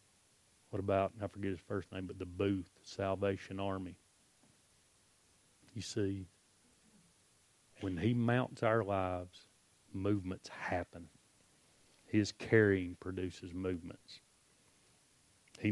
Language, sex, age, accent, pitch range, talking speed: English, male, 40-59, American, 95-105 Hz, 100 wpm